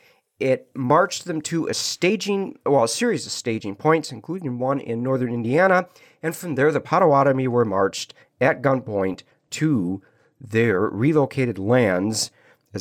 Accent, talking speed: American, 145 wpm